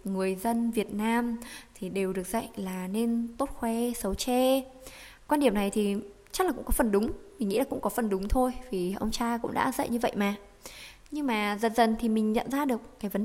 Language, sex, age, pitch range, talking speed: Vietnamese, female, 20-39, 205-275 Hz, 235 wpm